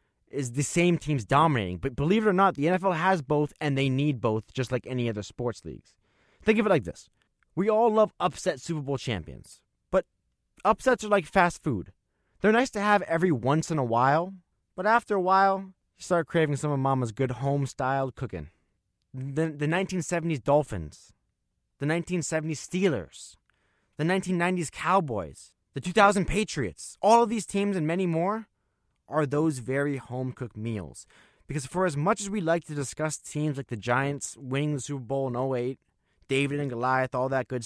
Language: English